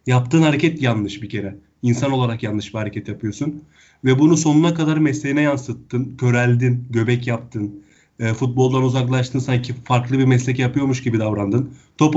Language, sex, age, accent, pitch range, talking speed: Turkish, male, 30-49, native, 120-150 Hz, 150 wpm